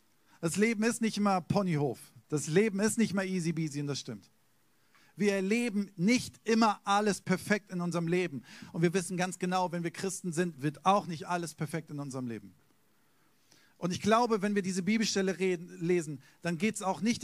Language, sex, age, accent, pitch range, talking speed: German, male, 50-69, German, 165-205 Hz, 190 wpm